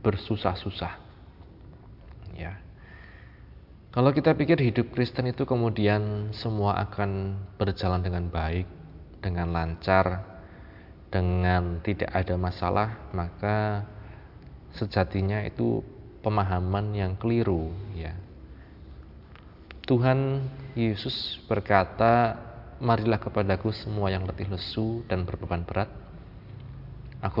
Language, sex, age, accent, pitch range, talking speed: Indonesian, male, 20-39, native, 90-115 Hz, 90 wpm